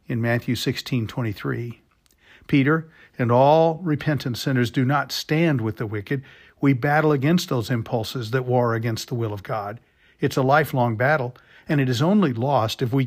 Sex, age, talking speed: male, 50-69, 170 wpm